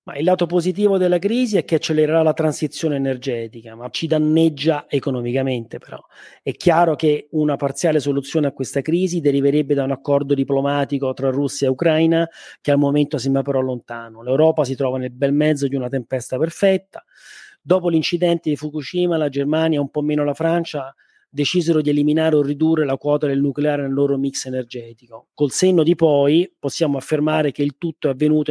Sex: male